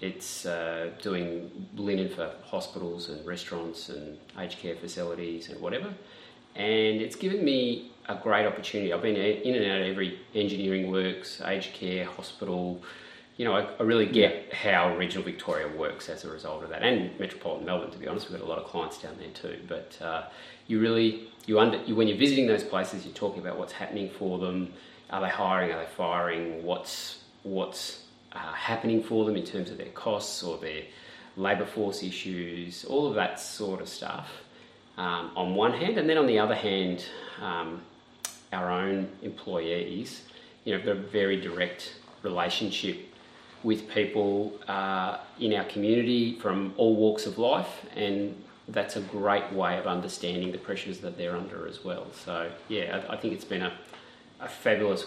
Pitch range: 90-105 Hz